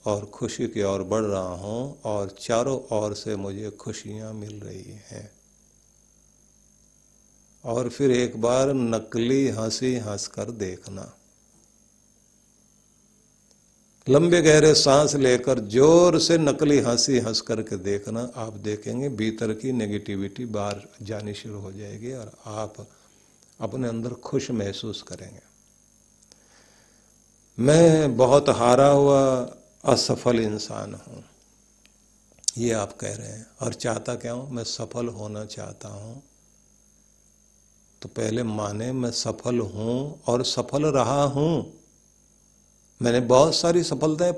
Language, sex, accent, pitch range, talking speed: Hindi, male, native, 105-140 Hz, 120 wpm